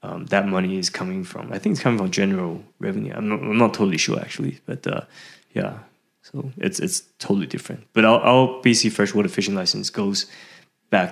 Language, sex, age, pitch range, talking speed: English, male, 20-39, 95-130 Hz, 200 wpm